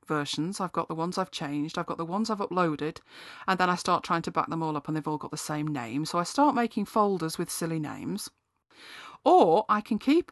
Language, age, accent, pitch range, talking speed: English, 40-59, British, 160-220 Hz, 245 wpm